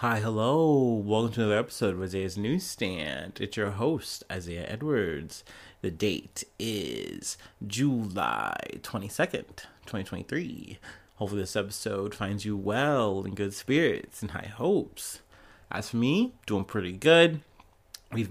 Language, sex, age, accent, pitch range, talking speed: English, male, 30-49, American, 105-140 Hz, 130 wpm